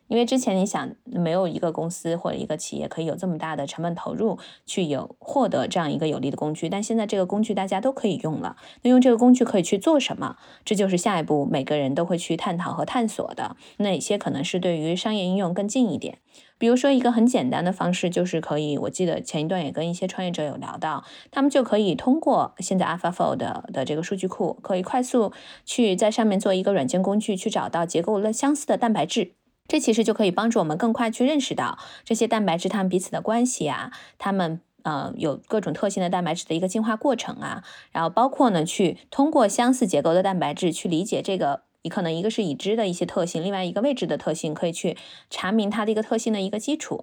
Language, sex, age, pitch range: Chinese, female, 20-39, 170-225 Hz